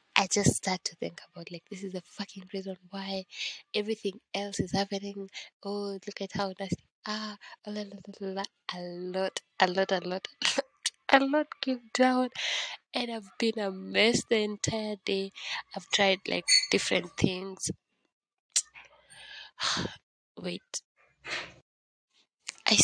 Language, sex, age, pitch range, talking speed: English, female, 20-39, 180-210 Hz, 135 wpm